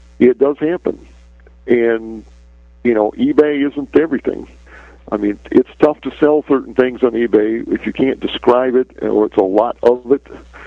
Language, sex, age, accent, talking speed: English, male, 50-69, American, 170 wpm